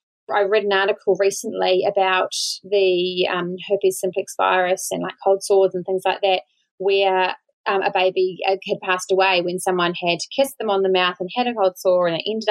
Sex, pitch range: female, 190-265 Hz